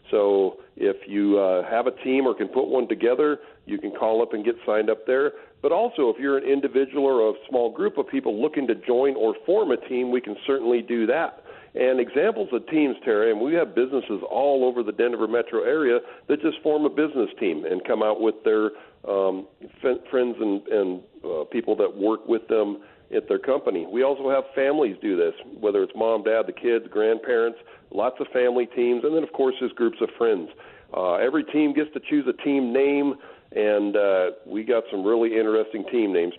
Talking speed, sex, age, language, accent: 210 wpm, male, 50-69, English, American